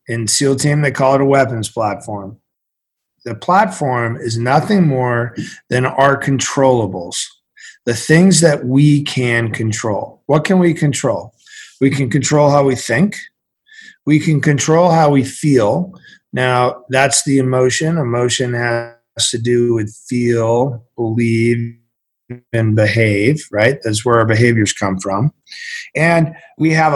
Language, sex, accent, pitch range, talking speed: English, male, American, 125-185 Hz, 140 wpm